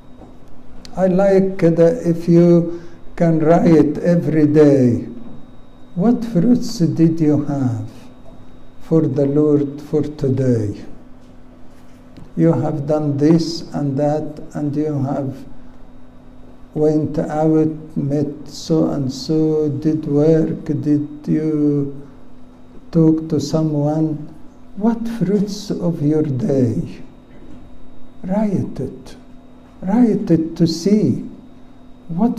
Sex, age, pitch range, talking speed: male, 60-79, 150-185 Hz, 100 wpm